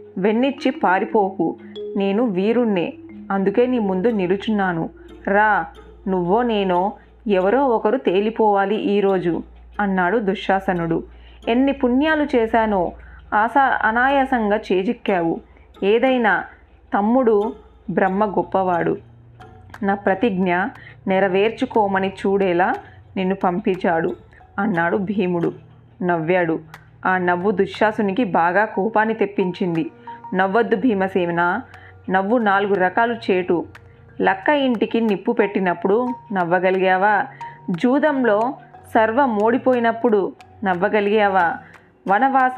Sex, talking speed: female, 80 wpm